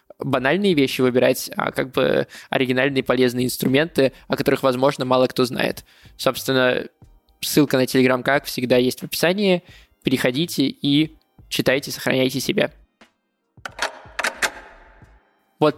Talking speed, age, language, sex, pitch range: 115 wpm, 20-39, Russian, male, 130-145 Hz